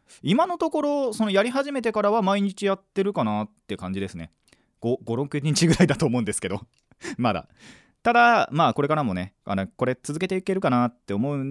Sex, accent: male, native